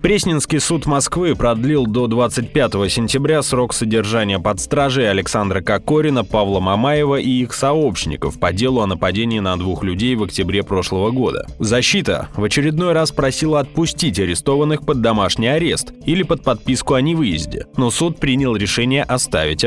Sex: male